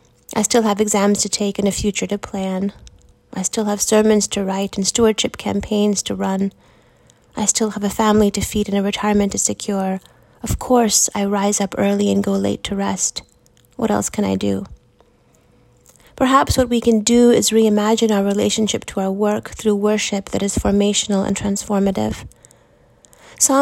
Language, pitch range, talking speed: English, 195-220 Hz, 180 wpm